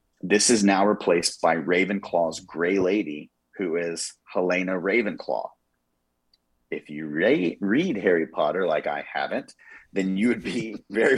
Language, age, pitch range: English, 30-49, 80-95 Hz